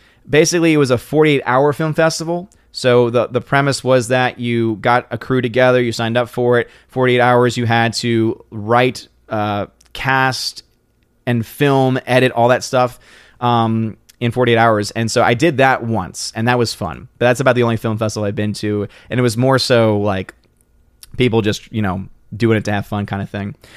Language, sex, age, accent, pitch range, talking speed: English, male, 20-39, American, 115-145 Hz, 200 wpm